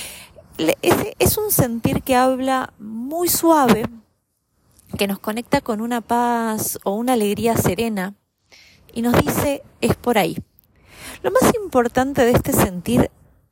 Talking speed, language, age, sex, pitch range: 130 wpm, Spanish, 30-49, female, 195-260 Hz